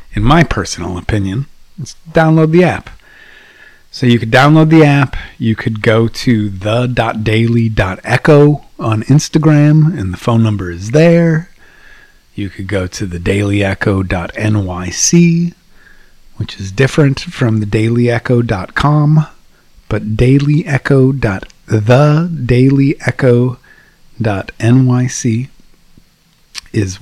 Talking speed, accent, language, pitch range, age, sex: 95 wpm, American, English, 105-135 Hz, 30-49, male